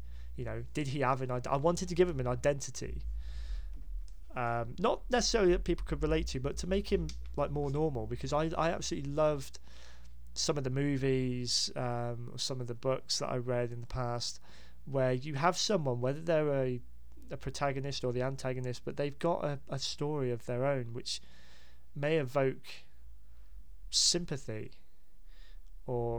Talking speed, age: 170 wpm, 30-49